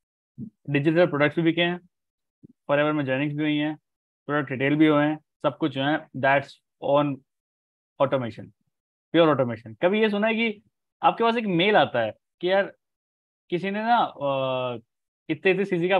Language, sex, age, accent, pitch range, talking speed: Hindi, male, 20-39, native, 135-185 Hz, 165 wpm